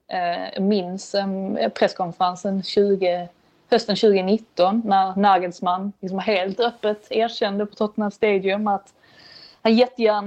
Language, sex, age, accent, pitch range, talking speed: Swedish, female, 20-39, native, 170-205 Hz, 105 wpm